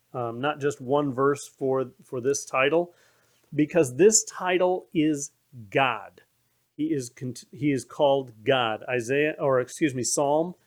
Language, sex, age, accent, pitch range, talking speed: English, male, 40-59, American, 120-165 Hz, 140 wpm